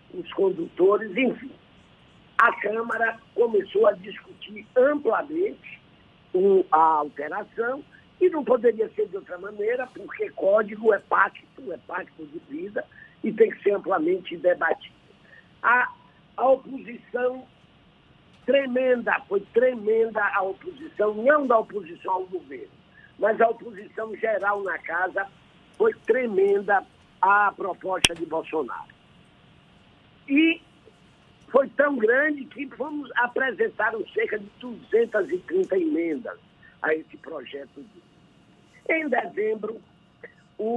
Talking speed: 105 wpm